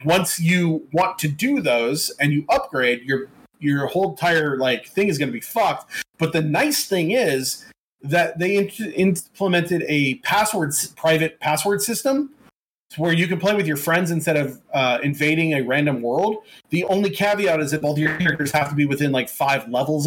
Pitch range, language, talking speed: 140-180 Hz, English, 185 wpm